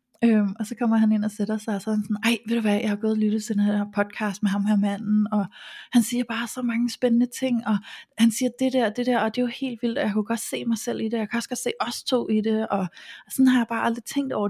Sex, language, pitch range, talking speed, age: female, Danish, 195-230 Hz, 320 wpm, 30-49